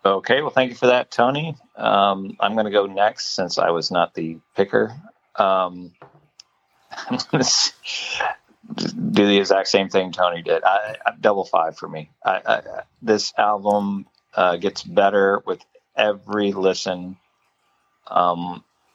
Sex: male